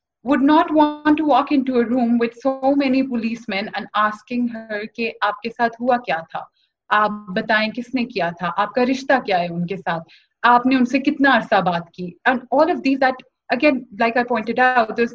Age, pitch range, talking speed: 30-49, 210-270 Hz, 175 wpm